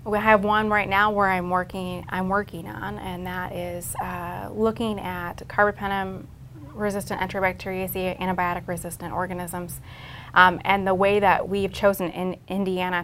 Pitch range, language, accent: 175-200 Hz, English, American